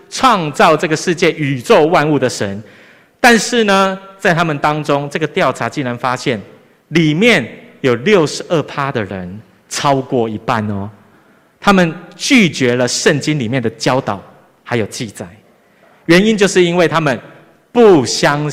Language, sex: Chinese, male